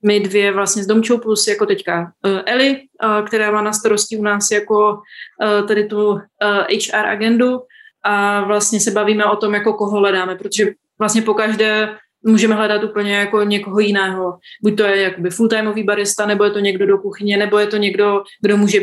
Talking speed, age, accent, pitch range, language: 180 wpm, 20-39, native, 200-215 Hz, Czech